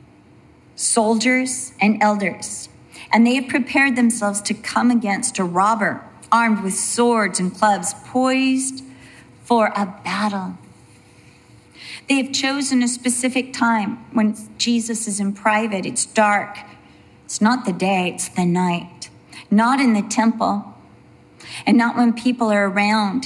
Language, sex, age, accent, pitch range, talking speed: English, female, 40-59, American, 180-235 Hz, 135 wpm